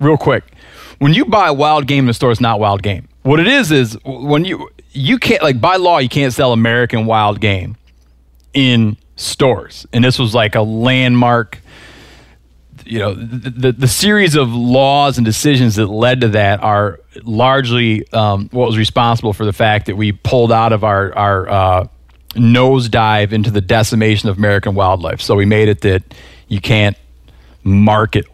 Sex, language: male, English